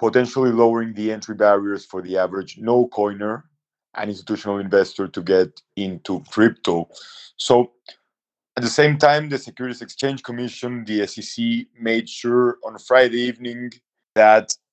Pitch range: 105-125 Hz